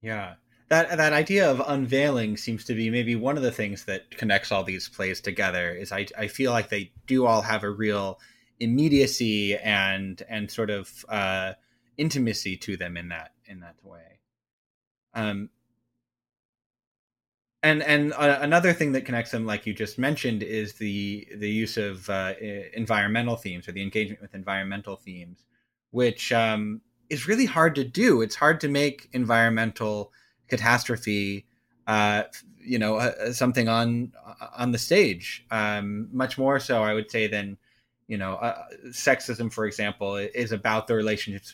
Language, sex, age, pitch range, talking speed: English, male, 20-39, 105-120 Hz, 160 wpm